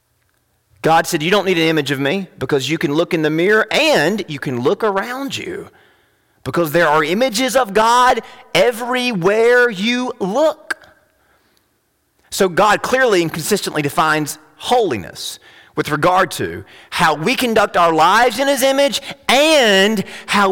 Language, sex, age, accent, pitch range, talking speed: English, male, 30-49, American, 155-210 Hz, 150 wpm